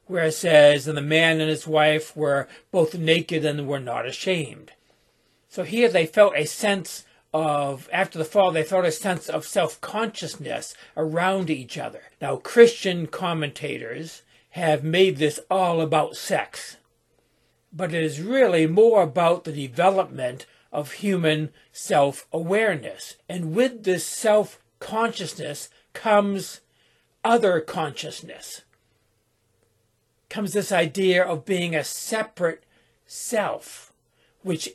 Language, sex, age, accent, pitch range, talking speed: English, male, 60-79, American, 150-185 Hz, 125 wpm